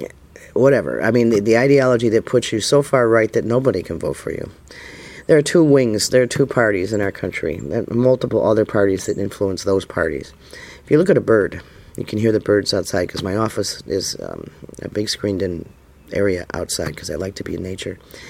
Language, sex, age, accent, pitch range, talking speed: English, male, 40-59, American, 95-125 Hz, 225 wpm